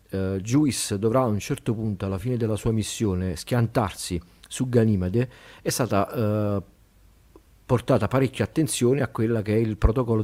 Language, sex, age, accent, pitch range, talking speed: Italian, male, 50-69, native, 100-115 Hz, 160 wpm